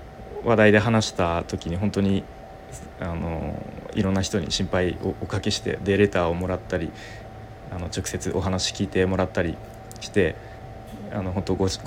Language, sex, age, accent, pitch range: Japanese, male, 20-39, native, 95-110 Hz